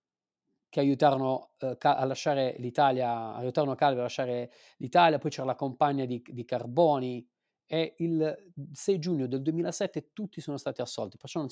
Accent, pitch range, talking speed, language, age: native, 125-160 Hz, 155 wpm, Italian, 30-49